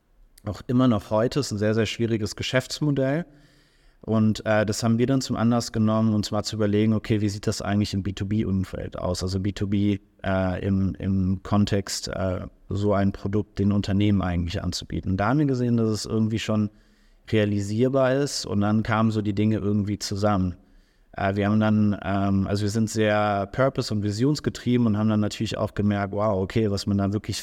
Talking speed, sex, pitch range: 190 wpm, male, 100-110 Hz